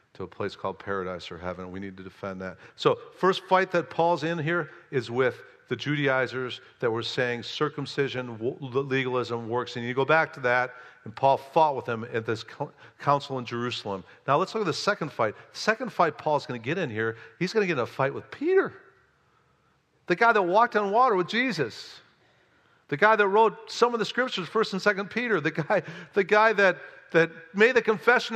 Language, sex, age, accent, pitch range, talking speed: English, male, 50-69, American, 130-200 Hz, 205 wpm